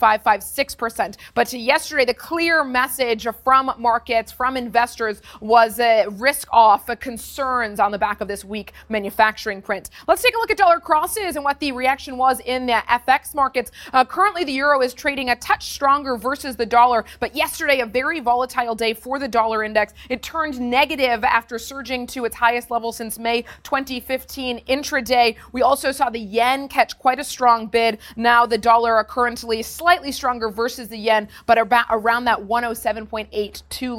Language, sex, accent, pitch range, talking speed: English, female, American, 230-280 Hz, 180 wpm